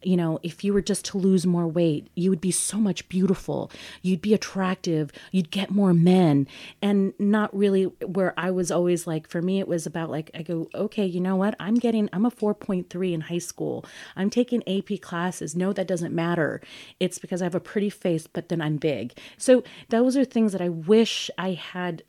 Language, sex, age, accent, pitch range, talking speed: English, female, 30-49, American, 155-185 Hz, 215 wpm